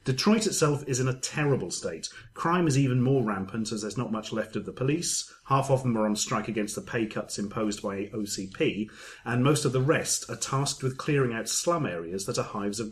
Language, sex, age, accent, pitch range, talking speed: English, male, 30-49, British, 110-140 Hz, 230 wpm